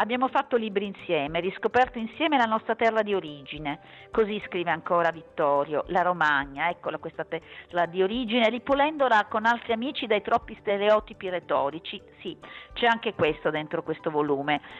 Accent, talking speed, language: native, 150 wpm, Italian